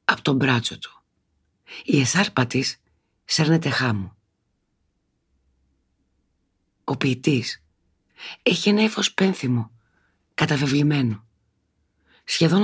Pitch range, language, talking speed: 95-135 Hz, Greek, 70 wpm